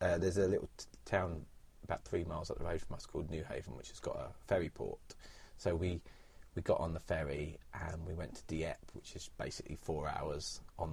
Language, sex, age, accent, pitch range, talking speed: English, male, 30-49, British, 80-95 Hz, 225 wpm